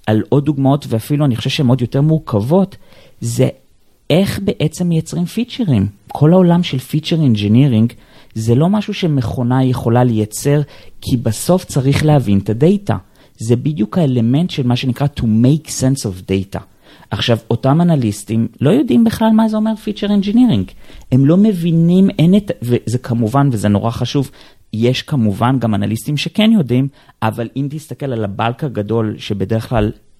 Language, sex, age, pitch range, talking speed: Hebrew, male, 30-49, 110-150 Hz, 155 wpm